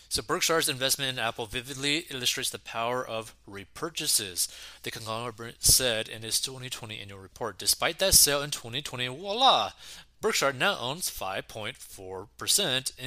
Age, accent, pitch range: 30-49, American, 110-135 Hz